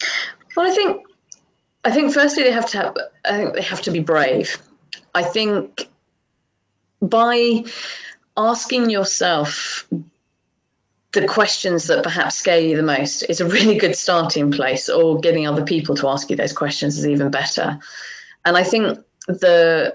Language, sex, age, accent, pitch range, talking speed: English, female, 30-49, British, 165-235 Hz, 155 wpm